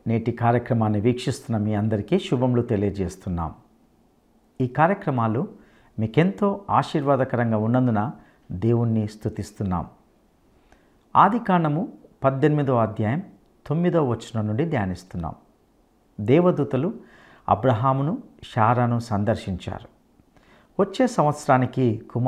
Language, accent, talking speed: English, Indian, 70 wpm